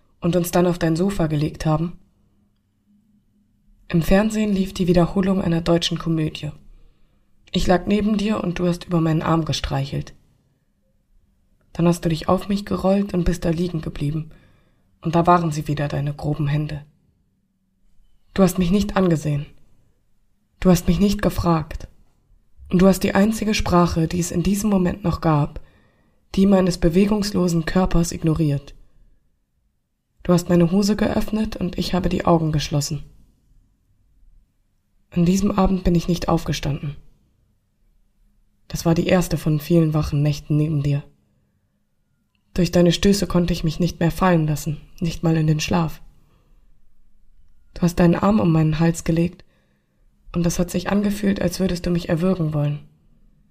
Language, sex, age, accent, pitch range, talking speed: German, female, 20-39, German, 150-185 Hz, 155 wpm